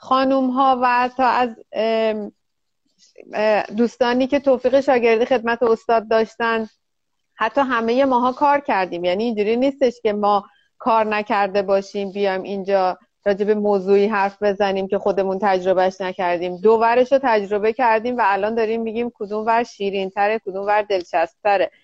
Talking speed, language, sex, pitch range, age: 140 wpm, Persian, female, 200-240 Hz, 30-49